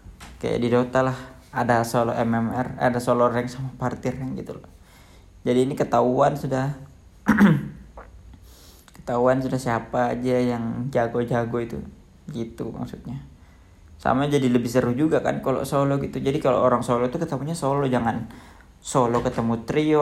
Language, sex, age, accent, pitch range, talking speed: Indonesian, male, 20-39, native, 90-140 Hz, 145 wpm